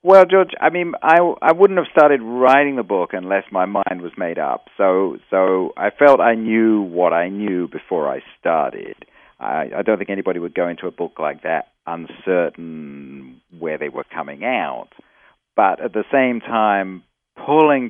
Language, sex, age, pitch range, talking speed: English, male, 50-69, 95-125 Hz, 180 wpm